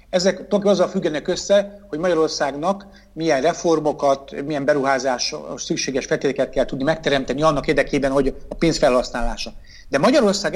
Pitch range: 135-185 Hz